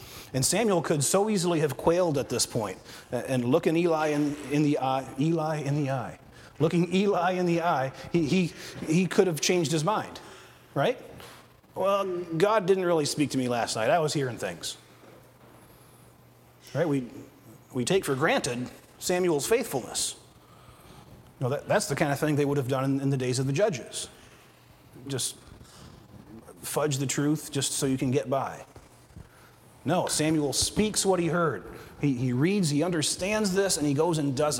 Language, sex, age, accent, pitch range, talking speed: English, male, 40-59, American, 130-165 Hz, 175 wpm